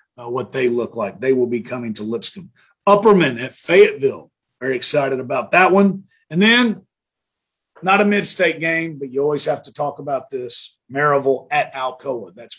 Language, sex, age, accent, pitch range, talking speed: English, male, 40-59, American, 135-175 Hz, 175 wpm